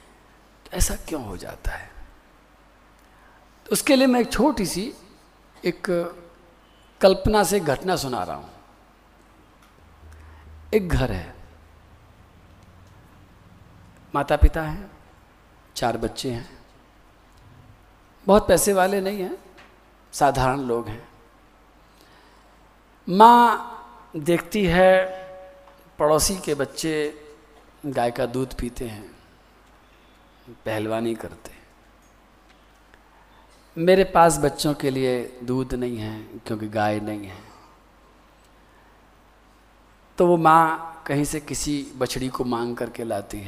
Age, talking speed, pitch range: 50-69, 100 wpm, 105-155 Hz